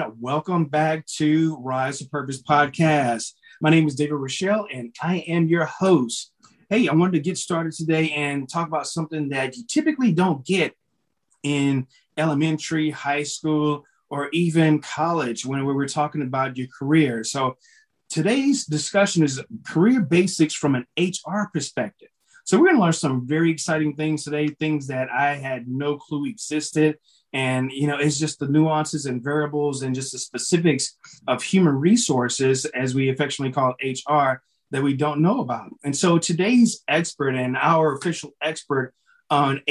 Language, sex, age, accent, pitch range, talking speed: English, male, 30-49, American, 135-165 Hz, 165 wpm